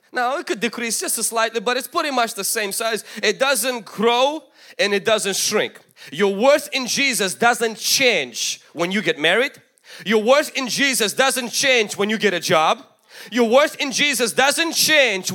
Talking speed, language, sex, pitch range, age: 190 wpm, English, male, 225-280 Hz, 20-39